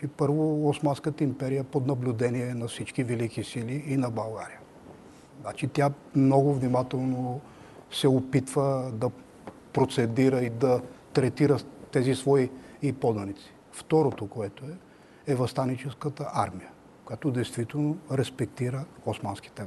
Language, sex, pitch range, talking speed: Bulgarian, male, 125-145 Hz, 115 wpm